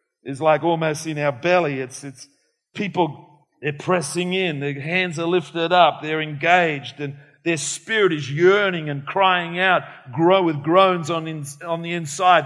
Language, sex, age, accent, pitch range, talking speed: English, male, 50-69, Australian, 165-225 Hz, 170 wpm